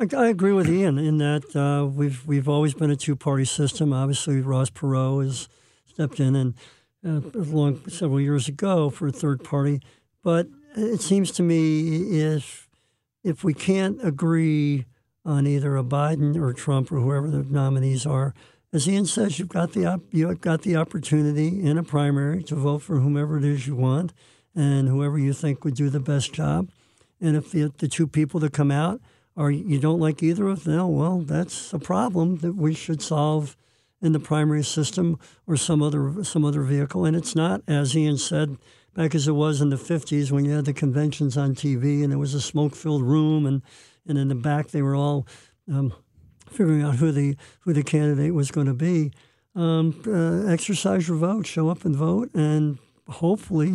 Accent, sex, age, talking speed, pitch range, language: American, male, 60-79, 195 wpm, 140-165 Hz, English